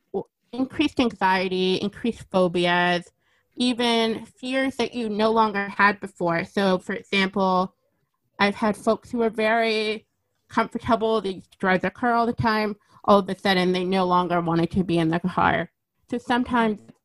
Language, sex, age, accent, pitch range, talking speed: English, female, 30-49, American, 180-220 Hz, 150 wpm